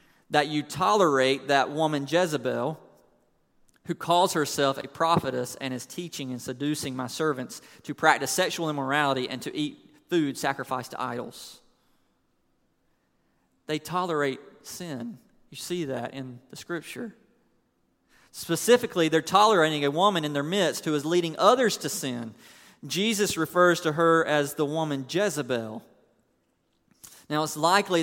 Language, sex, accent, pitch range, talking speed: English, male, American, 140-165 Hz, 135 wpm